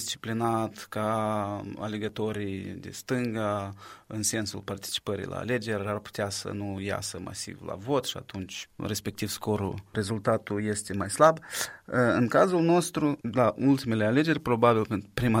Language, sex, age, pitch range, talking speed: Romanian, male, 20-39, 100-120 Hz, 135 wpm